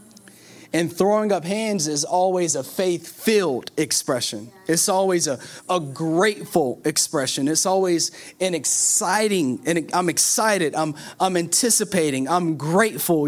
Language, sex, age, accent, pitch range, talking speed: English, male, 30-49, American, 135-185 Hz, 120 wpm